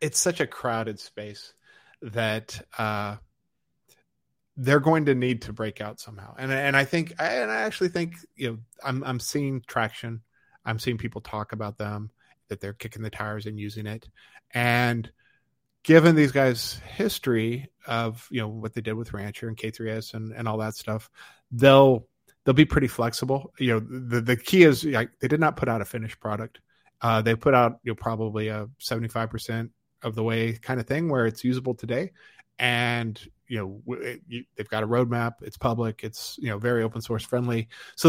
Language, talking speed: English, 190 wpm